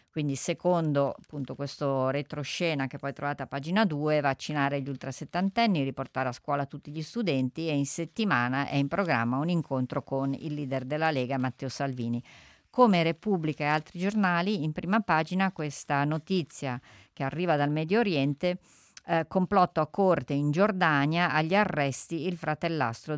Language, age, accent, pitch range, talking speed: Italian, 50-69, native, 140-165 Hz, 155 wpm